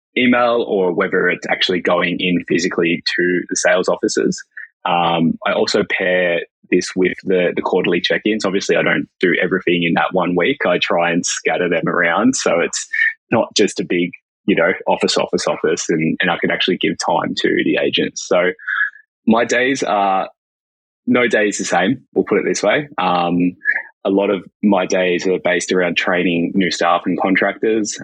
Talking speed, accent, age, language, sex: 180 wpm, Australian, 20-39, English, male